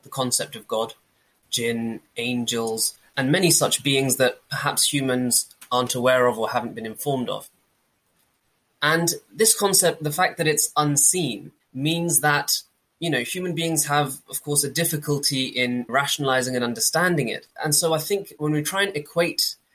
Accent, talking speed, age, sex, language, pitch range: British, 165 wpm, 20-39, male, English, 125-155 Hz